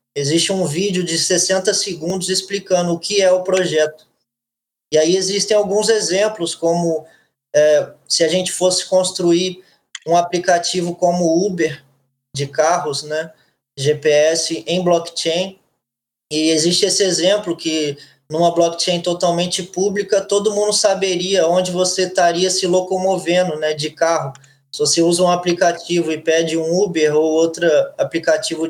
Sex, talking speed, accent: male, 140 wpm, Brazilian